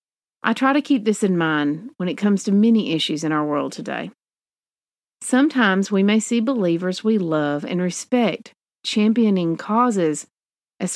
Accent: American